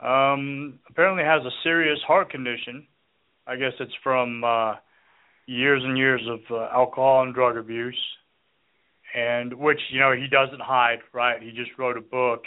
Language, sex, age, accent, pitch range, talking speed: English, male, 30-49, American, 115-130 Hz, 165 wpm